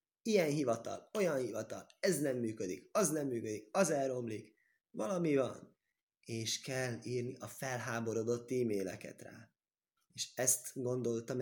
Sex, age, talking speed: male, 20-39, 125 wpm